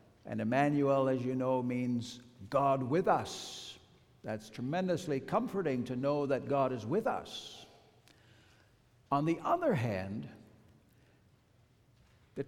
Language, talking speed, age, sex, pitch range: English, 115 wpm, 60-79, male, 115-150 Hz